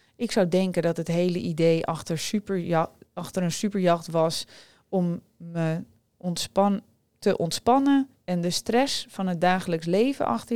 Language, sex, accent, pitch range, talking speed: Dutch, female, Dutch, 160-220 Hz, 135 wpm